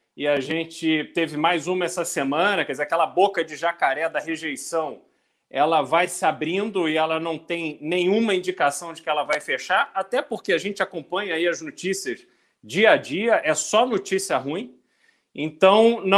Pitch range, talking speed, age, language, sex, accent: 160-200 Hz, 175 wpm, 40-59, Portuguese, male, Brazilian